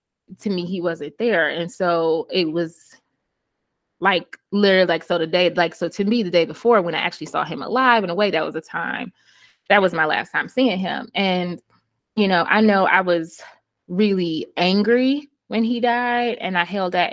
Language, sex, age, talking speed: English, female, 20-39, 200 wpm